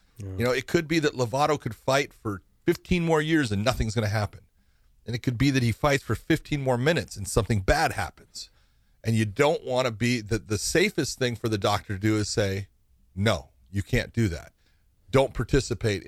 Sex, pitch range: male, 95-115 Hz